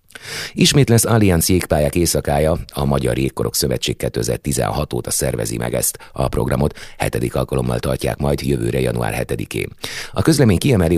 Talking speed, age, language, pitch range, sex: 140 wpm, 30-49, Hungarian, 65-90 Hz, male